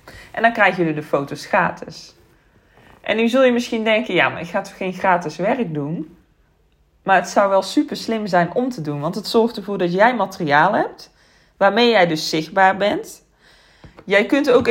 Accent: Dutch